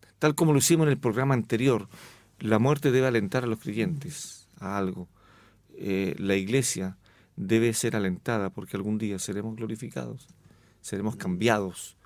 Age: 50-69